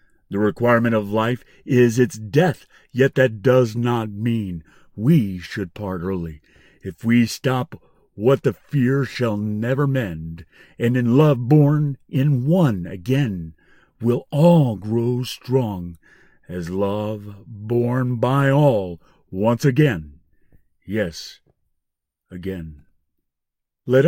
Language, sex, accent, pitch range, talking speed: English, male, American, 95-135 Hz, 115 wpm